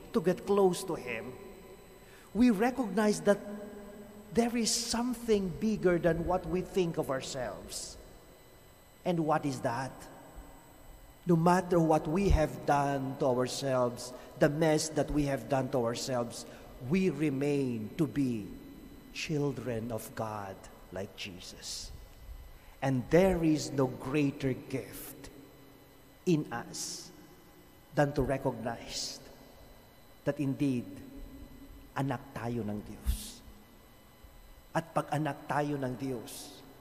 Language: English